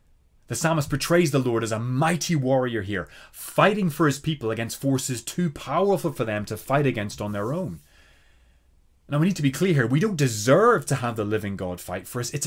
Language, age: English, 30-49